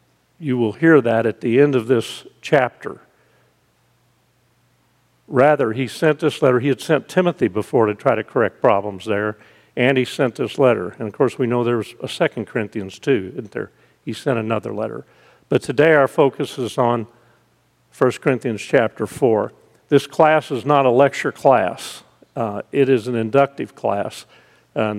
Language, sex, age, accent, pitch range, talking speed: English, male, 50-69, American, 115-140 Hz, 175 wpm